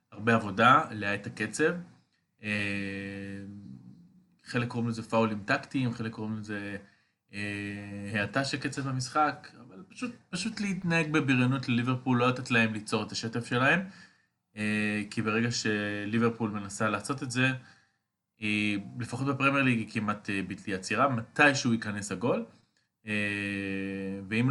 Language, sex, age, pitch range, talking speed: Hebrew, male, 20-39, 100-130 Hz, 115 wpm